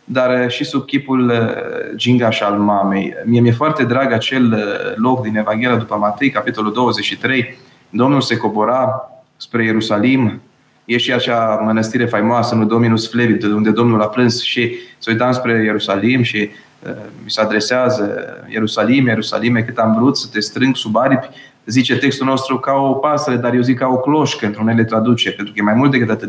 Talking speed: 175 wpm